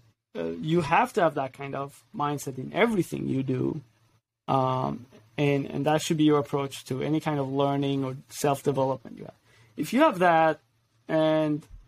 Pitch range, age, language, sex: 115-150 Hz, 30-49, Persian, male